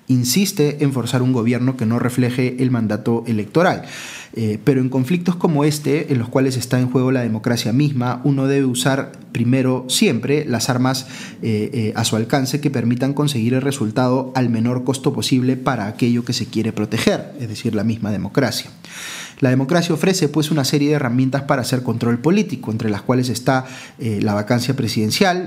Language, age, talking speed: Spanish, 30-49, 185 wpm